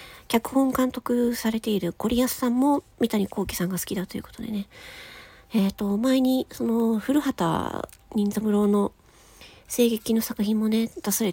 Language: Japanese